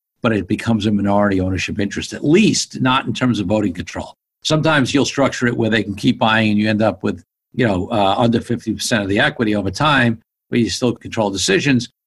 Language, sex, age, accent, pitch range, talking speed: English, male, 50-69, American, 105-130 Hz, 225 wpm